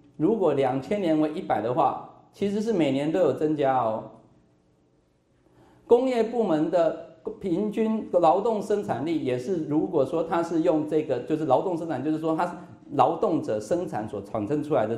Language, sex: Chinese, male